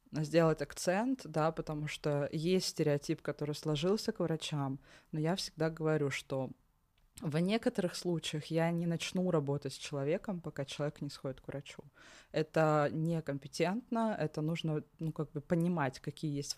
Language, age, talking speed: Russian, 20-39, 150 wpm